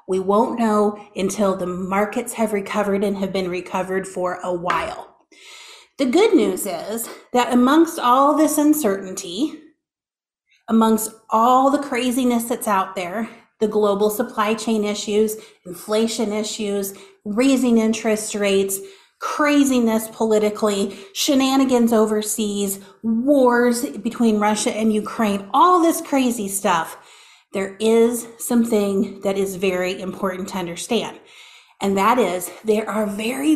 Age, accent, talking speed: 30-49, American, 125 wpm